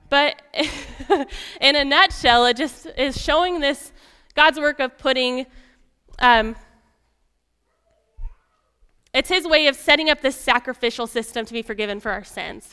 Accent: American